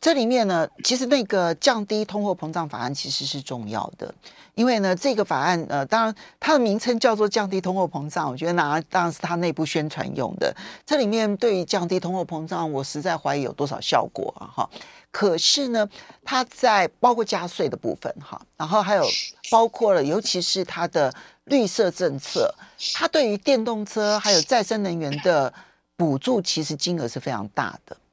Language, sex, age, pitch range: Chinese, male, 40-59, 160-235 Hz